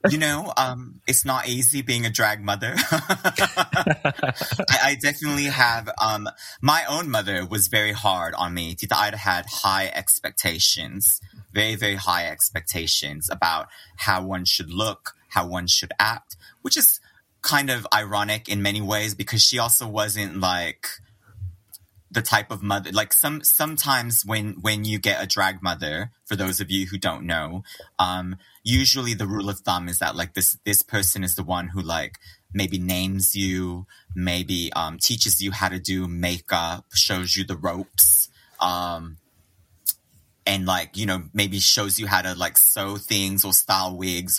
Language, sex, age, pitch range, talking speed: English, male, 30-49, 90-110 Hz, 165 wpm